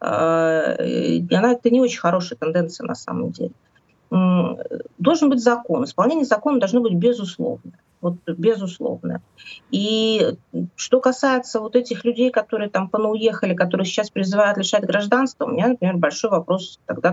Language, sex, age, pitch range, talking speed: Russian, female, 30-49, 175-240 Hz, 135 wpm